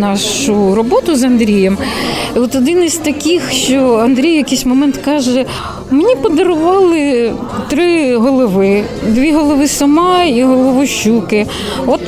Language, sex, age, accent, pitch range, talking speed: Ukrainian, female, 20-39, native, 230-300 Hz, 120 wpm